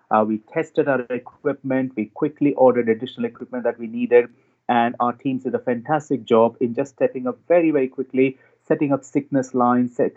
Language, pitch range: English, 115-135 Hz